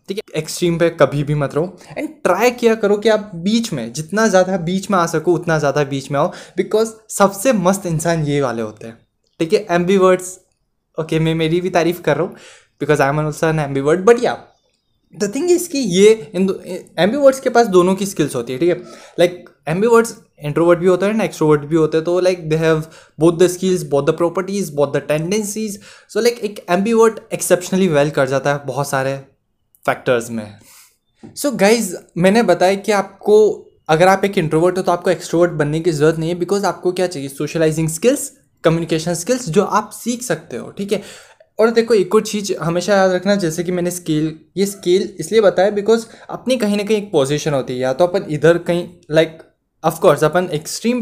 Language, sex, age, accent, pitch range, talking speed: Hindi, male, 20-39, native, 155-205 Hz, 210 wpm